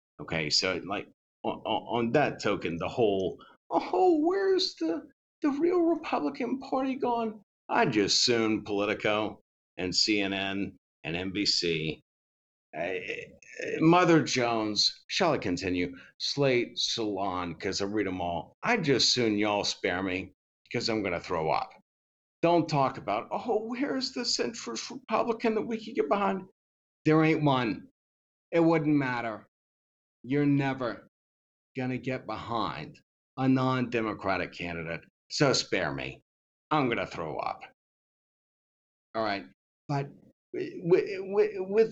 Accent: American